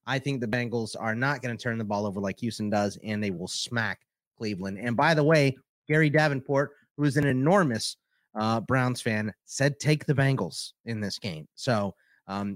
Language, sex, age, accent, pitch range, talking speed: English, male, 30-49, American, 115-150 Hz, 200 wpm